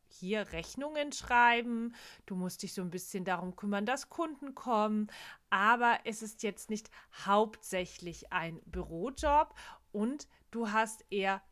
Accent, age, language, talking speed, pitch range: German, 40-59, German, 135 wpm, 190-250 Hz